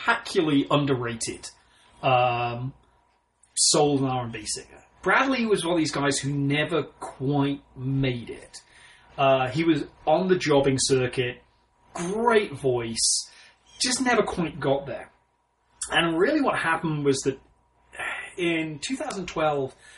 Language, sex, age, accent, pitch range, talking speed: English, male, 30-49, British, 130-160 Hz, 115 wpm